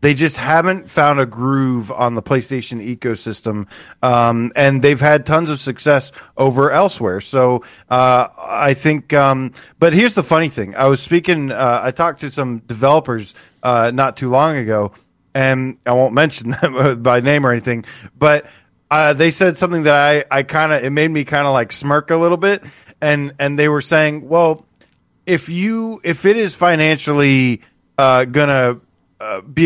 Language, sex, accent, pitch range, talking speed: English, male, American, 125-150 Hz, 170 wpm